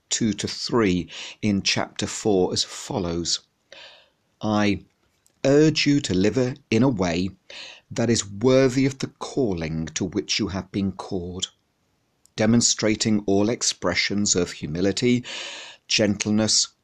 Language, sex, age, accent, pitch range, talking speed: English, male, 50-69, British, 95-115 Hz, 120 wpm